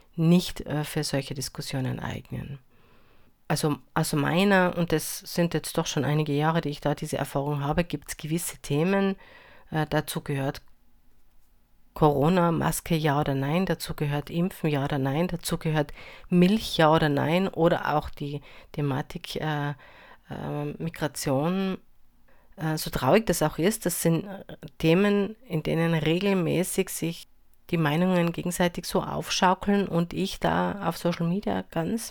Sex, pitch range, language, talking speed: female, 150-180 Hz, German, 150 wpm